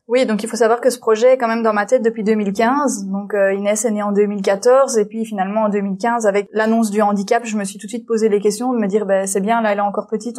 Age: 20-39